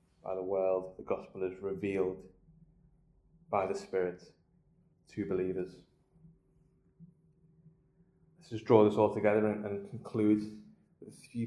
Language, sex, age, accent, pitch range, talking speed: English, male, 20-39, British, 105-145 Hz, 125 wpm